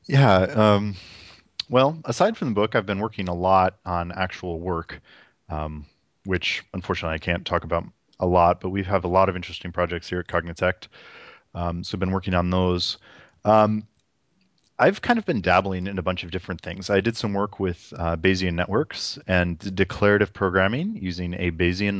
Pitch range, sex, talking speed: 90-105 Hz, male, 185 wpm